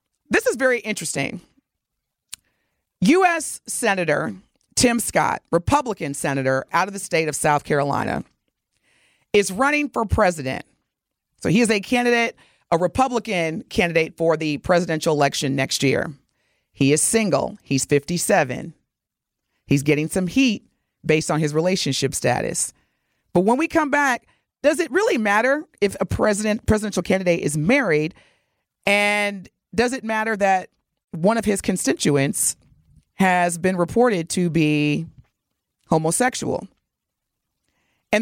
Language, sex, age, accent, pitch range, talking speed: English, female, 40-59, American, 160-225 Hz, 125 wpm